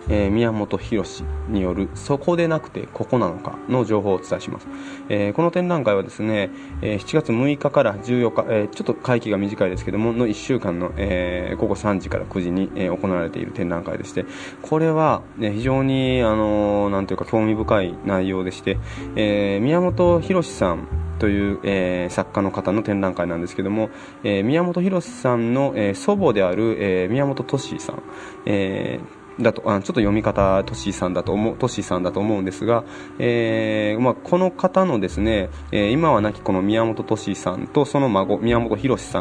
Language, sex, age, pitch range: Japanese, male, 20-39, 95-125 Hz